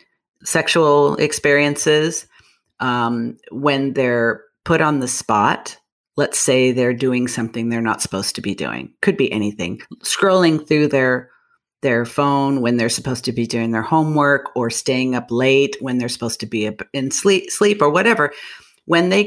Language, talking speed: English, 160 wpm